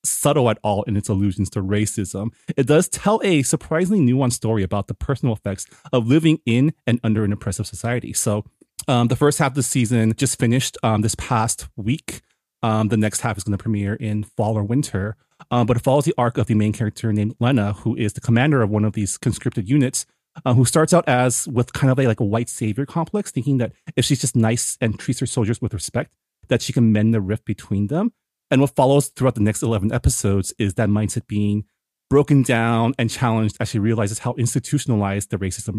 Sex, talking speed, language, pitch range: male, 220 wpm, English, 110-130 Hz